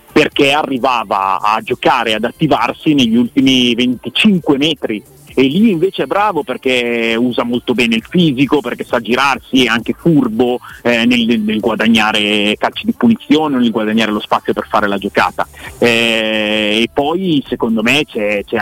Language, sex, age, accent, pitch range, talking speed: Italian, male, 30-49, native, 110-145 Hz, 160 wpm